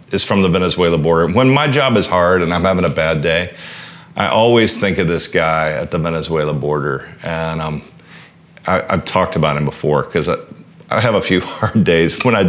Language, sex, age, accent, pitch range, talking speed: English, male, 40-59, American, 85-115 Hz, 205 wpm